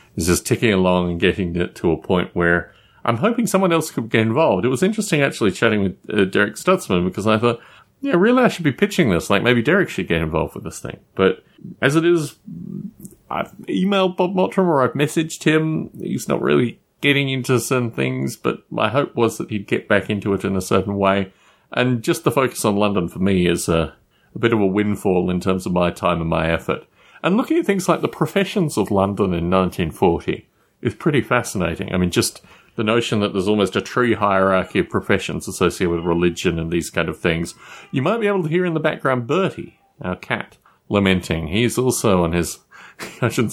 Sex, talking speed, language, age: male, 215 wpm, English, 30-49